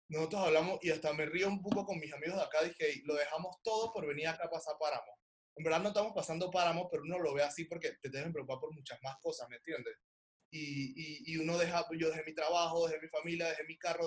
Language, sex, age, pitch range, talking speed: Spanish, male, 20-39, 145-180 Hz, 250 wpm